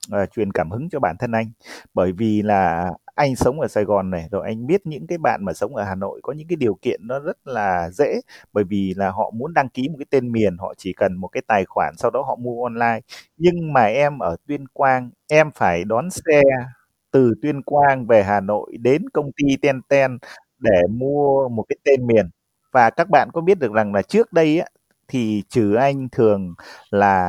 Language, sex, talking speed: Vietnamese, male, 225 wpm